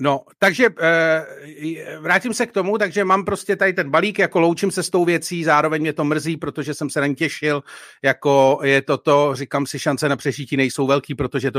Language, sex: Czech, male